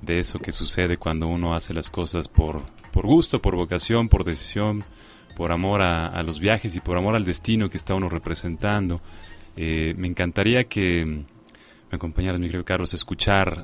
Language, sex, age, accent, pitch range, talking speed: Spanish, male, 30-49, Mexican, 85-105 Hz, 180 wpm